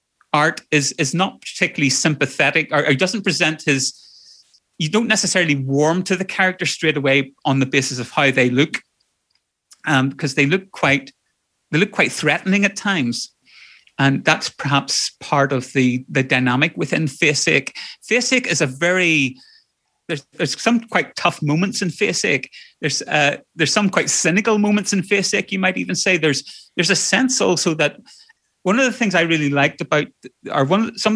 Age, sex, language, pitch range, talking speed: 30-49, male, English, 140-190 Hz, 175 wpm